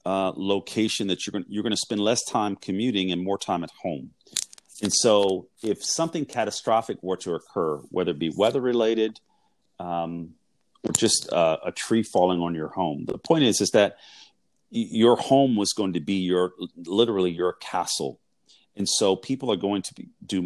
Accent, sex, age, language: American, male, 40-59, English